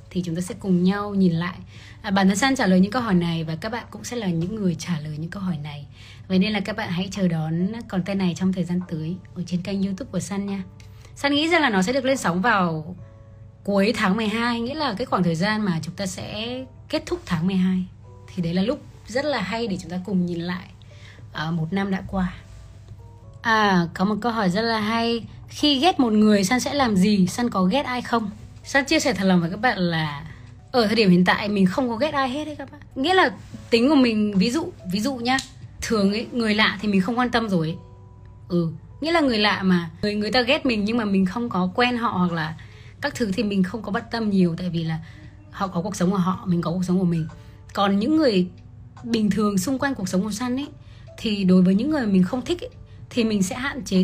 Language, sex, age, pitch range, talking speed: Vietnamese, female, 20-39, 175-235 Hz, 260 wpm